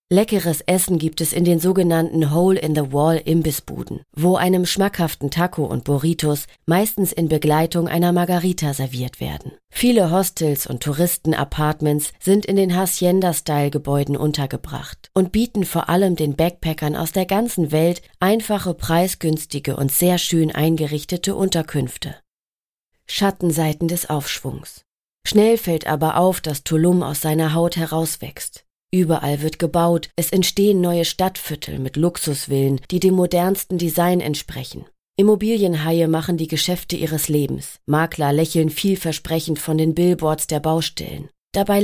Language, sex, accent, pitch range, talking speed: German, female, German, 155-185 Hz, 130 wpm